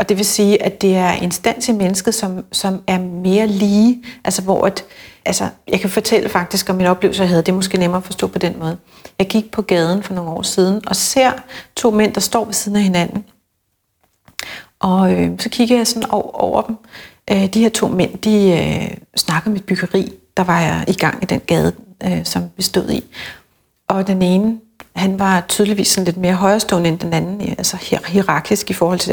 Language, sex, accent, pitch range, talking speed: Danish, female, native, 185-215 Hz, 220 wpm